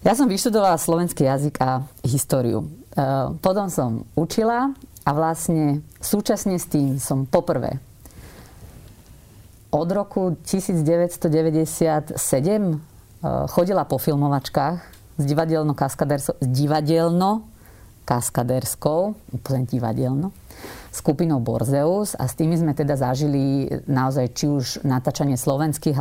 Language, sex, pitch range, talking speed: Slovak, female, 135-165 Hz, 90 wpm